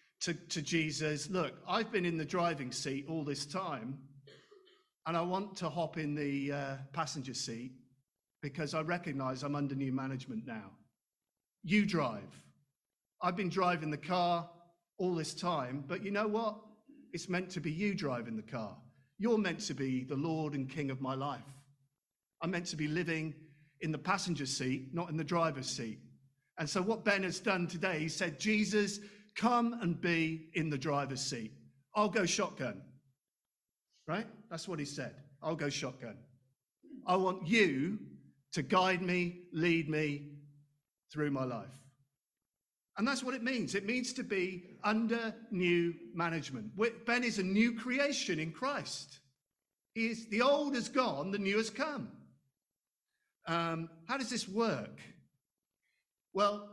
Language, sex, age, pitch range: English, male, 50-69, 140-200 Hz